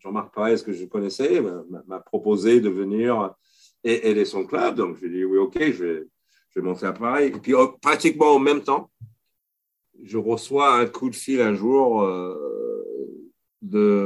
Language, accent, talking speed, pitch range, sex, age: French, French, 180 wpm, 95-145 Hz, male, 50-69